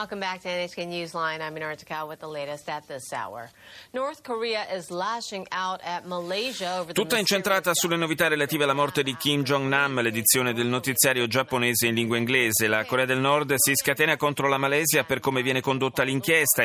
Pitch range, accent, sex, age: 110-155 Hz, native, male, 30-49